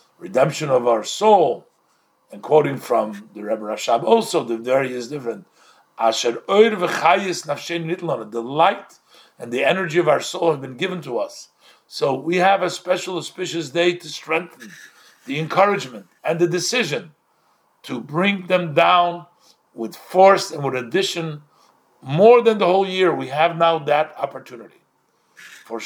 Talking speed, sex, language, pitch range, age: 145 wpm, male, English, 135-180 Hz, 50-69